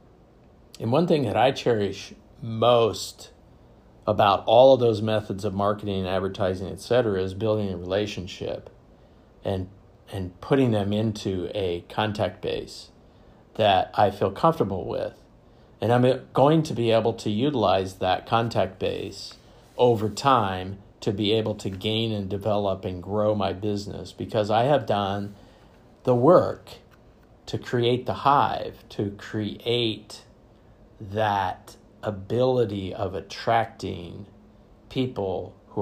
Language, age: English, 50-69